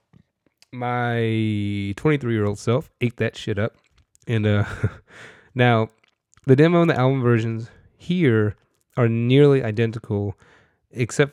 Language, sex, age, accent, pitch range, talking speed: English, male, 20-39, American, 100-125 Hz, 110 wpm